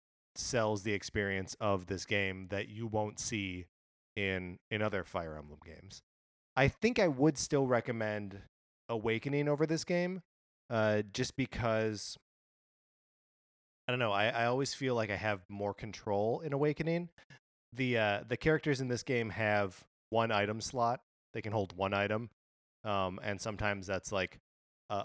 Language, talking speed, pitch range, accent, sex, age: English, 155 wpm, 90-115 Hz, American, male, 20-39